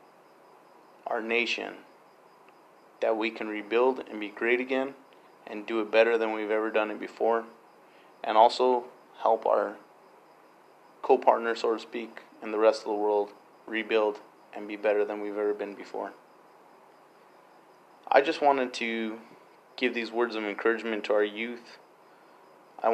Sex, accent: male, American